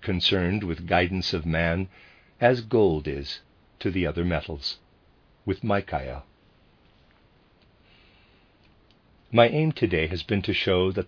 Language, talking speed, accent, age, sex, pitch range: English, 120 wpm, American, 50-69, male, 85-110 Hz